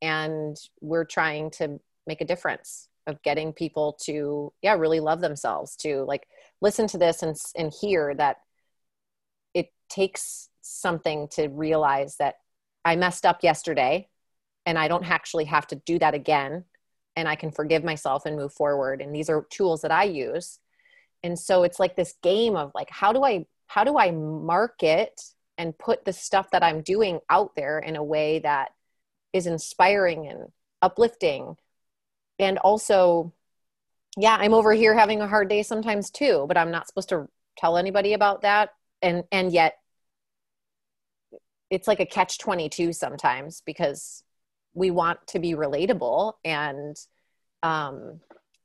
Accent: American